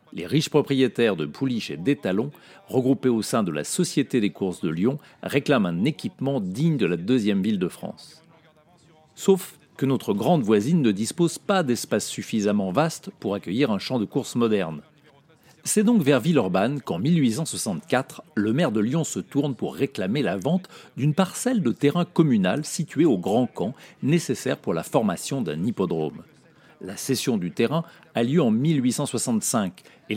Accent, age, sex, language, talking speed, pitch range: French, 40-59, male, French, 170 wpm, 125-180 Hz